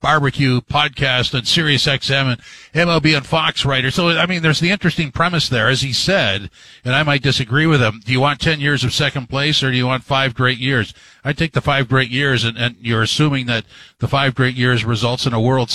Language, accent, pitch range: English, American, 120-145 Hz